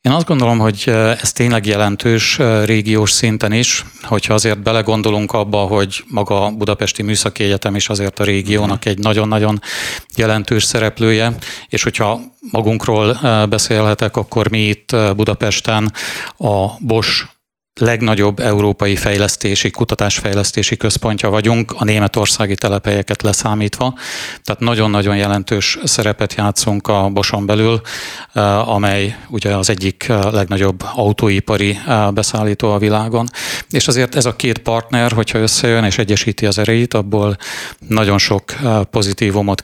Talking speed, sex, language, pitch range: 125 wpm, male, Hungarian, 105-115 Hz